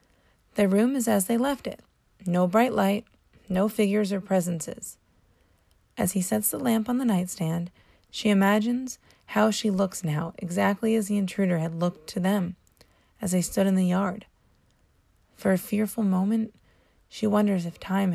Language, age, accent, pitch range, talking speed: English, 30-49, American, 165-210 Hz, 165 wpm